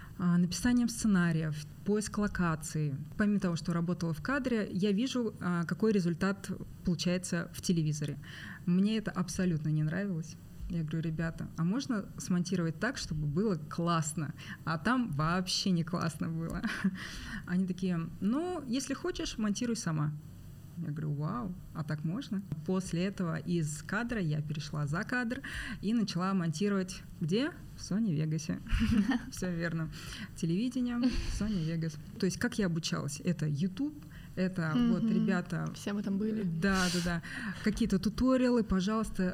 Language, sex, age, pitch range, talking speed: Russian, female, 20-39, 165-205 Hz, 135 wpm